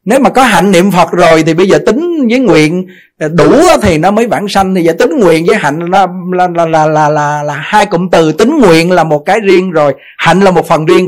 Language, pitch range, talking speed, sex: Vietnamese, 145-200 Hz, 255 wpm, male